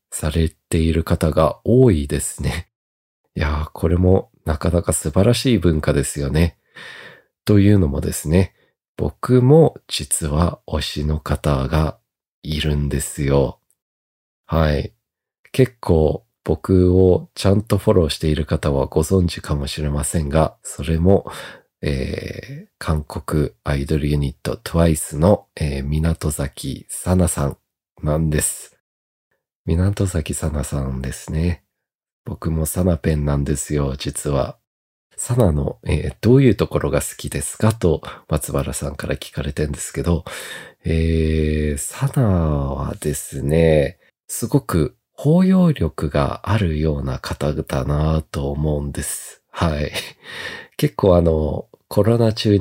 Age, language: 40-59, Japanese